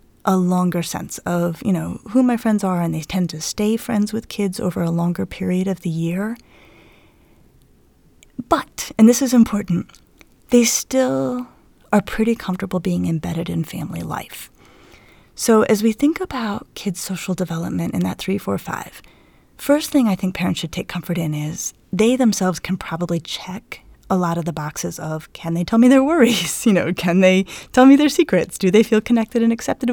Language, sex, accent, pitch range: English, female, American, 170-220 Hz